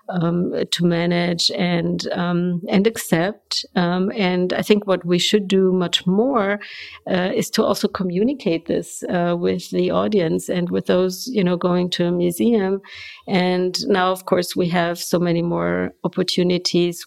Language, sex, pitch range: English, female, 175-205 Hz